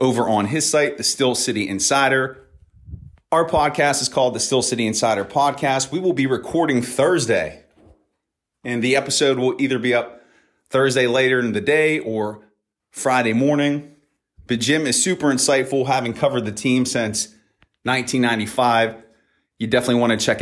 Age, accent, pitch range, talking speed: 30-49, American, 120-145 Hz, 155 wpm